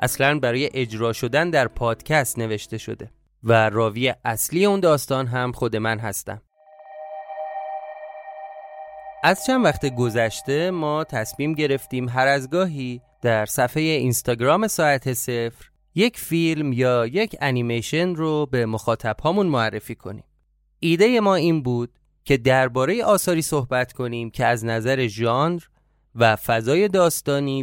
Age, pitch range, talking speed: 30-49, 120-155 Hz, 130 wpm